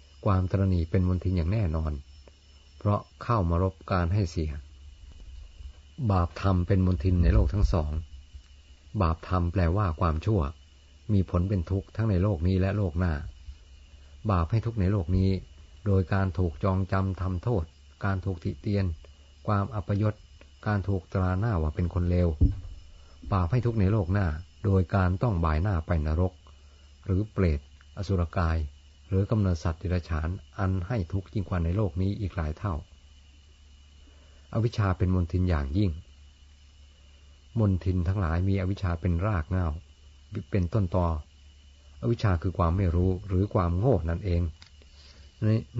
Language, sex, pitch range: Thai, male, 75-95 Hz